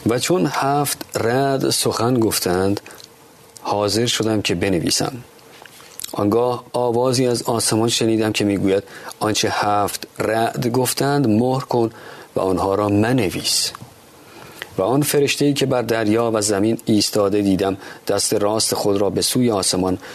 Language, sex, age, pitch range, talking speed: Persian, male, 40-59, 100-120 Hz, 130 wpm